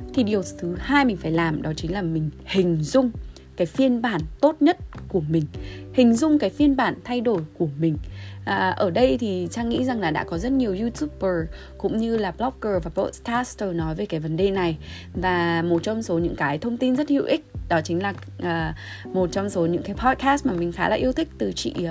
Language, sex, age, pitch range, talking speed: Vietnamese, female, 20-39, 165-230 Hz, 225 wpm